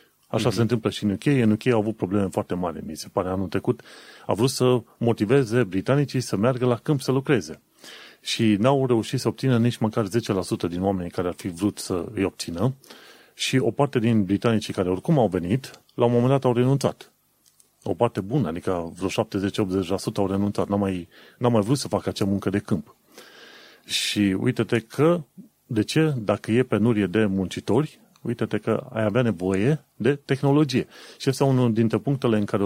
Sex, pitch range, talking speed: male, 95-120 Hz, 190 wpm